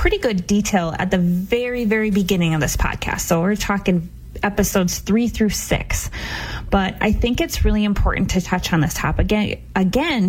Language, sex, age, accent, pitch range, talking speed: English, female, 20-39, American, 170-210 Hz, 180 wpm